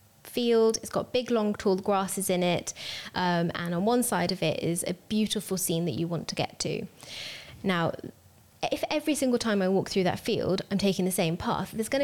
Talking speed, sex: 215 wpm, female